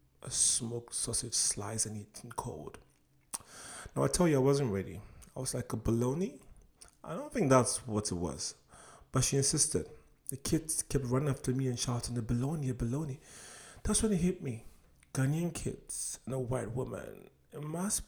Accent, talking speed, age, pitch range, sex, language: Nigerian, 180 wpm, 30-49, 110-140 Hz, male, English